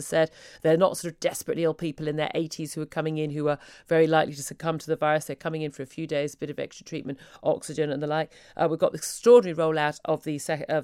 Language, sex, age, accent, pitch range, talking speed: English, female, 40-59, British, 160-215 Hz, 275 wpm